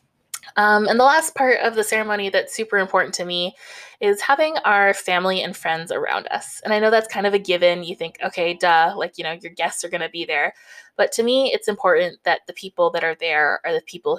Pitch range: 170-230 Hz